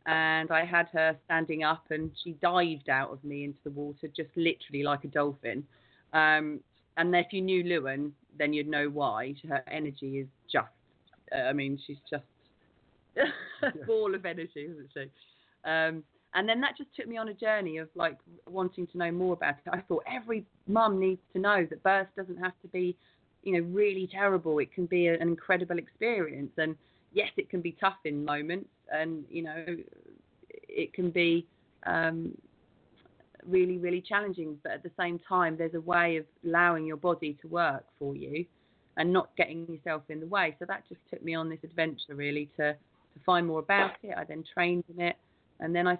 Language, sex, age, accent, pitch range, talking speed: English, female, 30-49, British, 155-180 Hz, 195 wpm